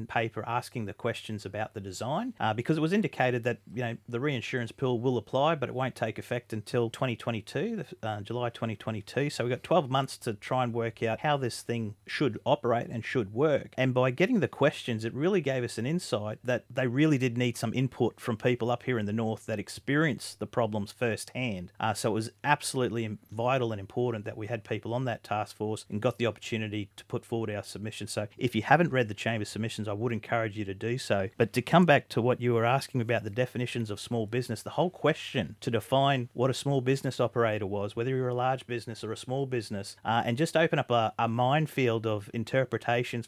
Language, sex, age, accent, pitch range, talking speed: English, male, 40-59, Australian, 110-130 Hz, 225 wpm